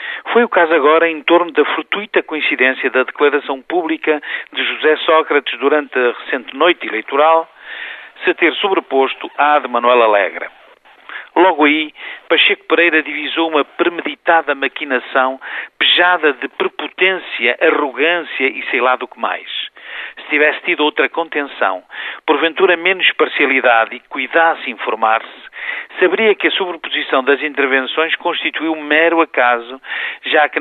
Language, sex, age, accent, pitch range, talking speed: Portuguese, male, 50-69, Portuguese, 140-165 Hz, 135 wpm